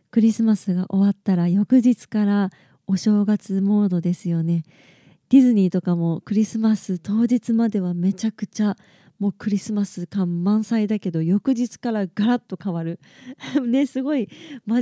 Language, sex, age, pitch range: Japanese, female, 20-39, 185-230 Hz